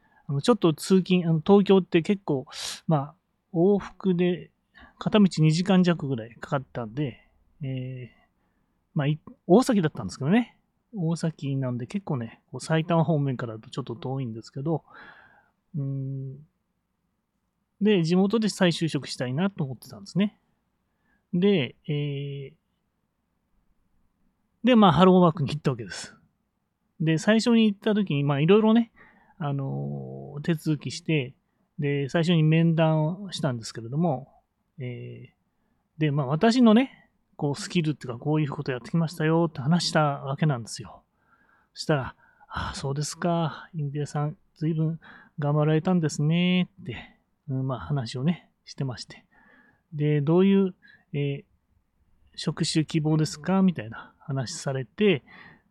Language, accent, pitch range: Japanese, native, 140-185 Hz